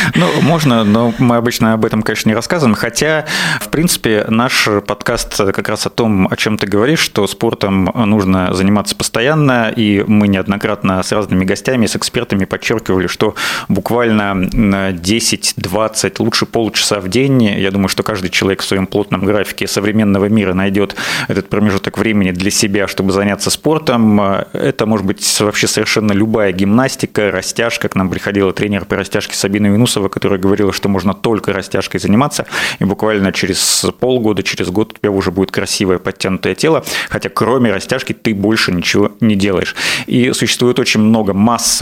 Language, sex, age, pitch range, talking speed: Russian, male, 30-49, 95-115 Hz, 160 wpm